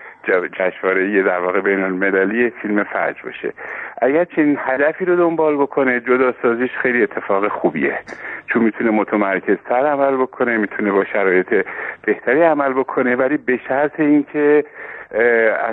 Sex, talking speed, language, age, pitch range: male, 140 wpm, Persian, 50-69, 110-135 Hz